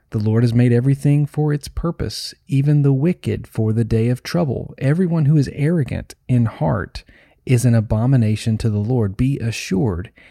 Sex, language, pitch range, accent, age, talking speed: male, English, 115-140 Hz, American, 30-49, 175 wpm